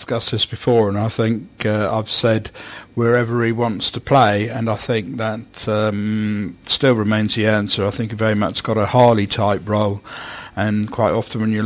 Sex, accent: male, British